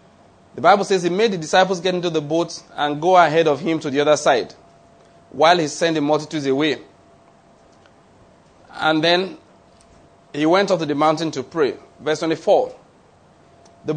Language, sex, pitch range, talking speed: English, male, 155-190 Hz, 170 wpm